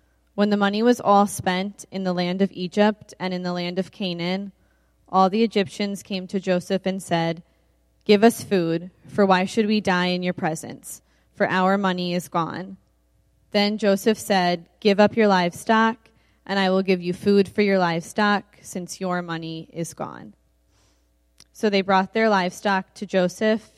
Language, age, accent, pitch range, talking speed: English, 10-29, American, 175-200 Hz, 175 wpm